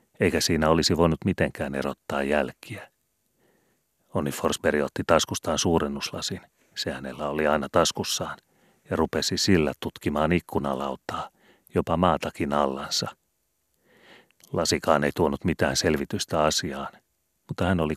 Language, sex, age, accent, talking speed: Finnish, male, 40-59, native, 110 wpm